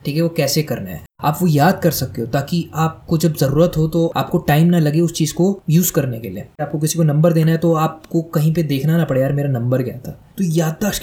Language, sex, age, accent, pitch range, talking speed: Hindi, male, 20-39, native, 135-170 Hz, 265 wpm